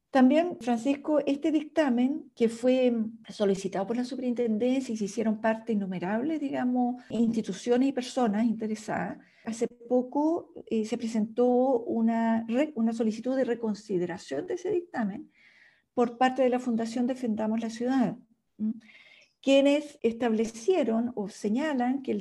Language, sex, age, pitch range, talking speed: Spanish, female, 50-69, 220-265 Hz, 130 wpm